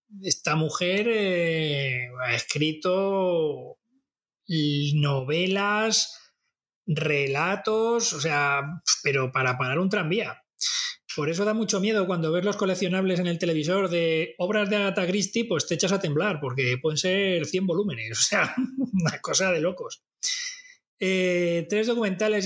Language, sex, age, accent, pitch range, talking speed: Spanish, male, 30-49, Spanish, 150-195 Hz, 135 wpm